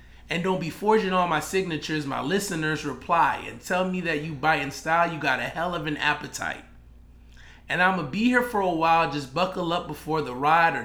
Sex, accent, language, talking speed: male, American, English, 215 wpm